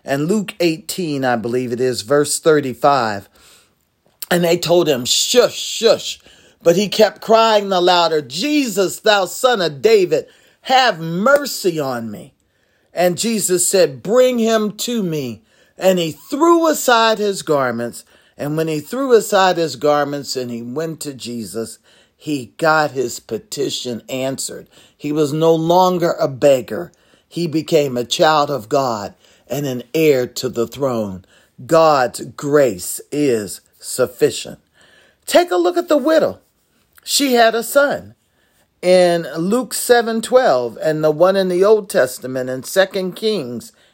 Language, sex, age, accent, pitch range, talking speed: English, male, 40-59, American, 140-210 Hz, 145 wpm